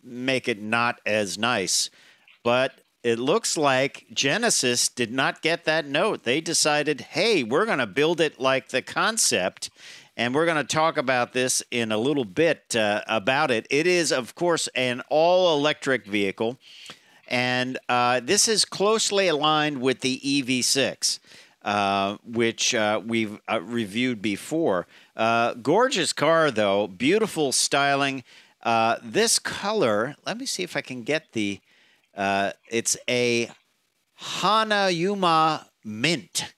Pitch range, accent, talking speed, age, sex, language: 115-150 Hz, American, 140 wpm, 50-69, male, English